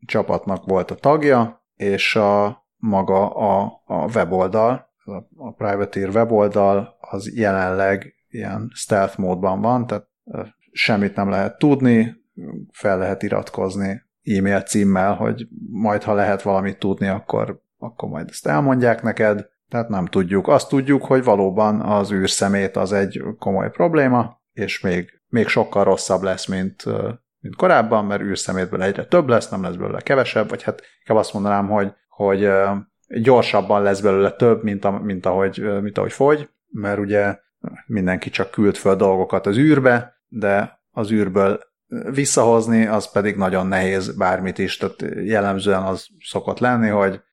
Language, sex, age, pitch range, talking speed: Hungarian, male, 30-49, 95-110 Hz, 145 wpm